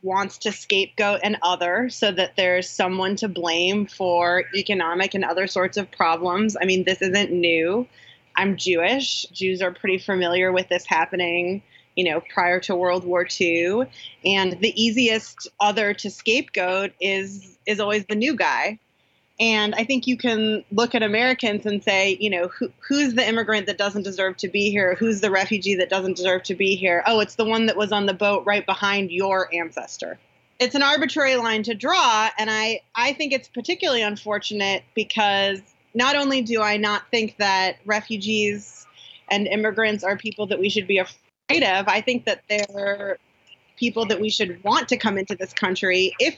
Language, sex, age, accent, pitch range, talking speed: English, female, 20-39, American, 185-220 Hz, 180 wpm